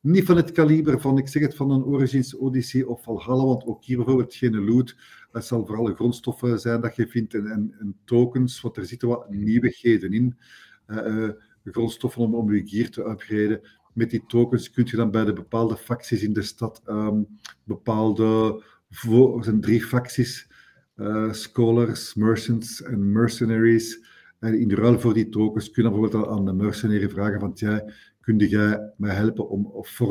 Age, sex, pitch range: 50-69, male, 105-125 Hz